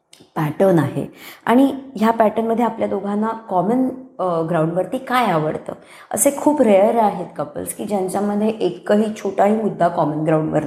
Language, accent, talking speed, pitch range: Marathi, native, 135 wpm, 165-210 Hz